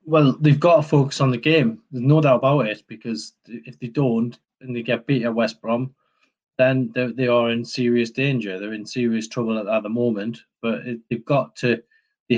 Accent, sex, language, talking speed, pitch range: British, male, English, 205 wpm, 115-140 Hz